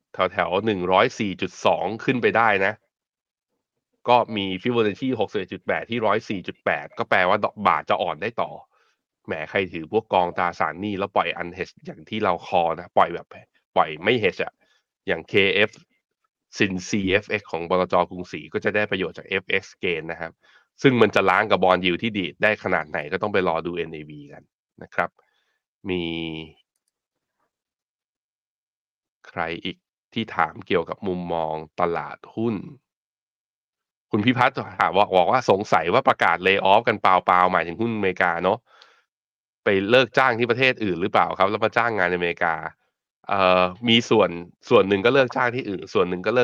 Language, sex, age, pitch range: Thai, male, 20-39, 90-115 Hz